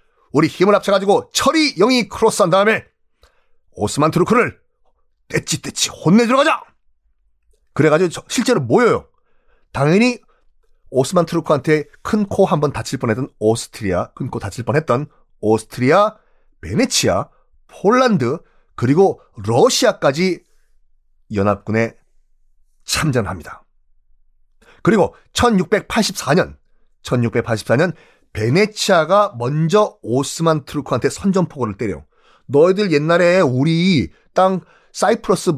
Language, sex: Korean, male